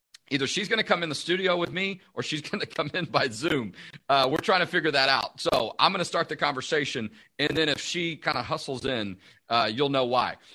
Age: 40-59